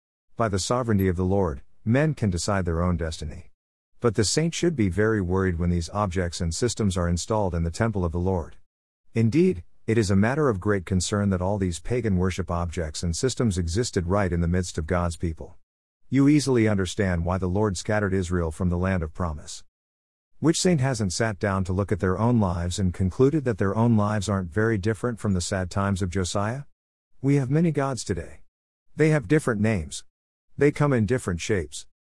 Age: 50-69